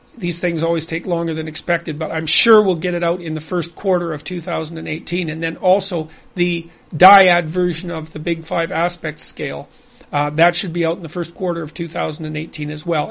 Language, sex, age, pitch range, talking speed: English, male, 40-59, 165-210 Hz, 205 wpm